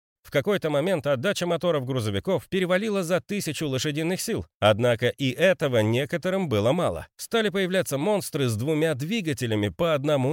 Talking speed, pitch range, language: 145 wpm, 125-190 Hz, Russian